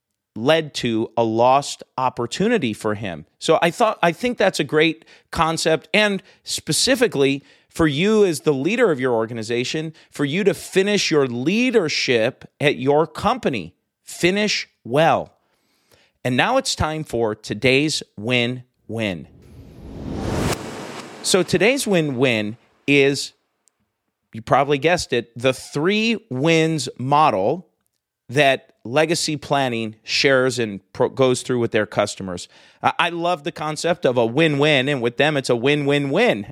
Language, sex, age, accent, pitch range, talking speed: English, male, 40-59, American, 130-170 Hz, 135 wpm